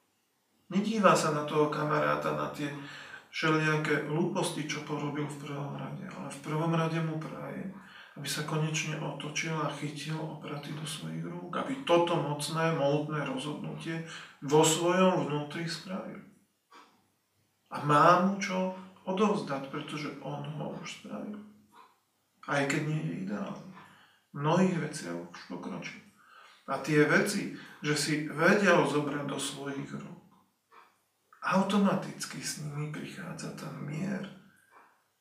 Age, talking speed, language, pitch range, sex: 40-59, 125 wpm, Slovak, 145-180 Hz, male